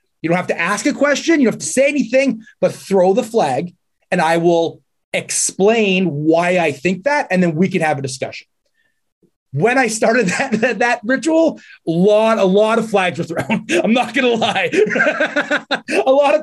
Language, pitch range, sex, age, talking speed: English, 155-210 Hz, male, 30-49, 195 wpm